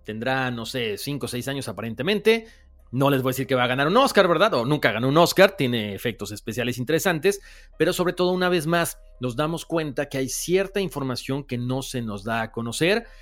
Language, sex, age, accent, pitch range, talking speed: Spanish, male, 40-59, Mexican, 120-155 Hz, 220 wpm